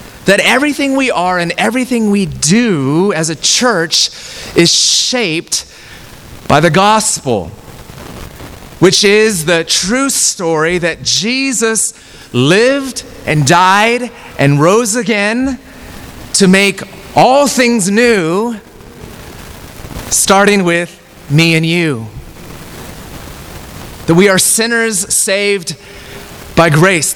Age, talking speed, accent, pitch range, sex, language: 30-49, 100 wpm, American, 150-210 Hz, male, English